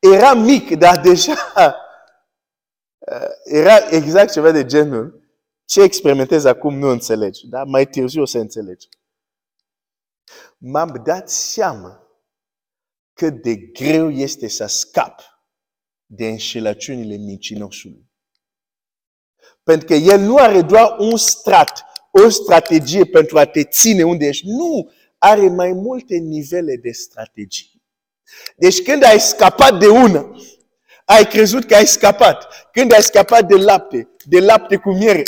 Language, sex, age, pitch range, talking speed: Romanian, male, 50-69, 140-225 Hz, 130 wpm